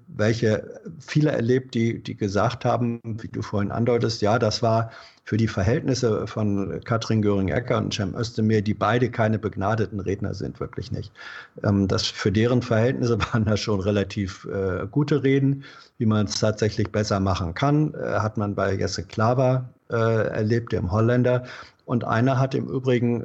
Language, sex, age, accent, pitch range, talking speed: German, male, 50-69, German, 100-125 Hz, 170 wpm